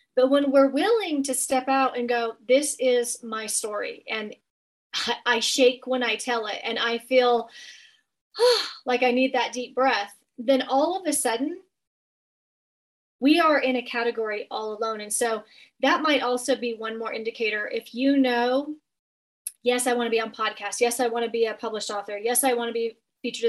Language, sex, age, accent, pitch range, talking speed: English, female, 30-49, American, 225-265 Hz, 190 wpm